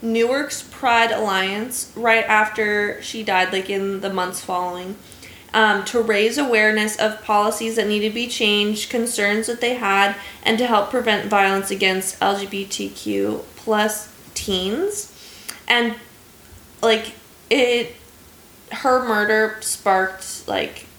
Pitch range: 190-230 Hz